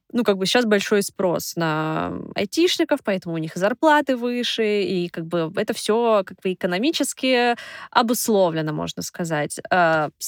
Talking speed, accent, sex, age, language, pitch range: 140 wpm, native, female, 20-39, Russian, 175-220 Hz